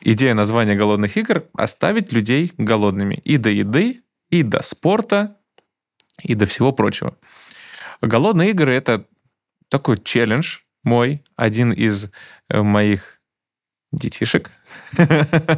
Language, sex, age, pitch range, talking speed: Russian, male, 20-39, 105-135 Hz, 105 wpm